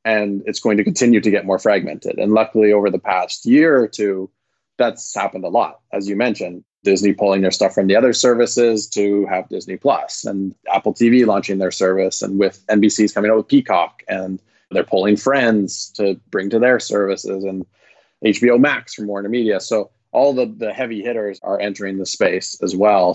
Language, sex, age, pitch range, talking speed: English, male, 20-39, 95-110 Hz, 195 wpm